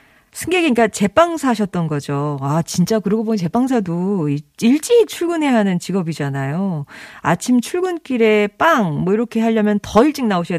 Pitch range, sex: 165-250 Hz, female